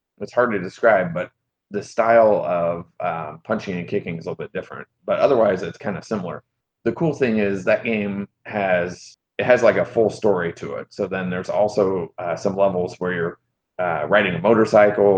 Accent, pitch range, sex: American, 95-110 Hz, male